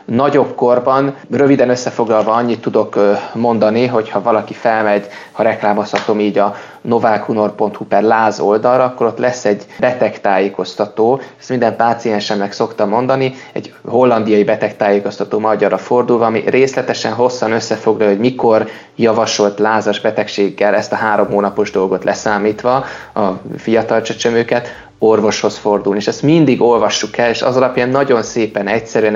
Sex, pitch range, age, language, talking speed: male, 105-115 Hz, 20-39, Hungarian, 130 wpm